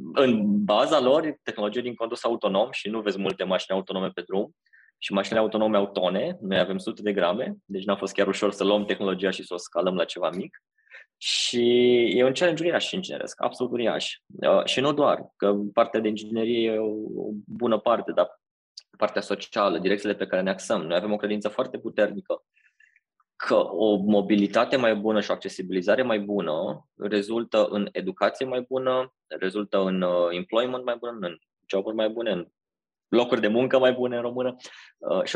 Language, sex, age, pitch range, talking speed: Romanian, male, 20-39, 100-120 Hz, 180 wpm